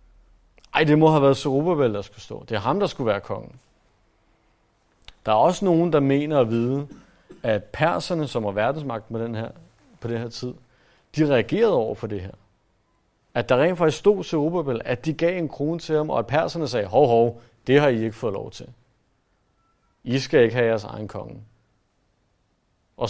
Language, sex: Danish, male